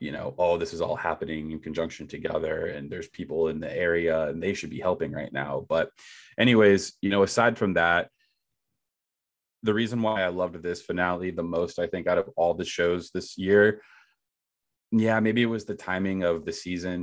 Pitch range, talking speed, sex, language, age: 85-105 Hz, 205 wpm, male, English, 20-39